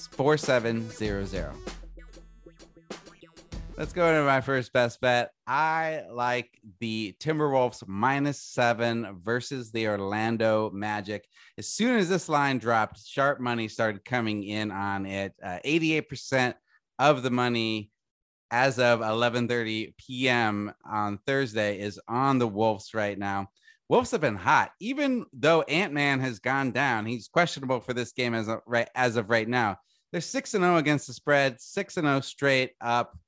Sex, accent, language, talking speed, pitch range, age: male, American, English, 155 wpm, 115-150 Hz, 30-49